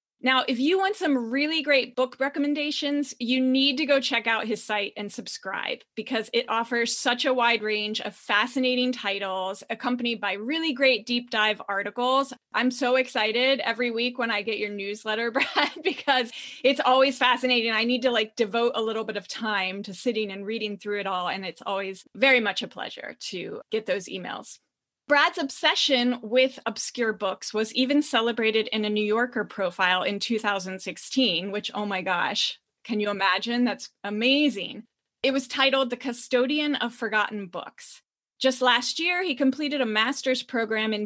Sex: female